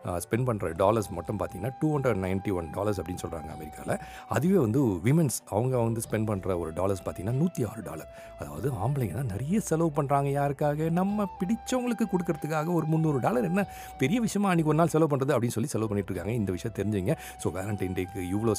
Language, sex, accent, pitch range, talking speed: Tamil, male, native, 100-145 Hz, 180 wpm